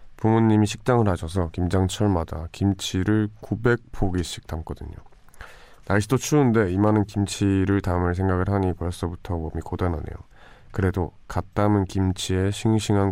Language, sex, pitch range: Korean, male, 85-105 Hz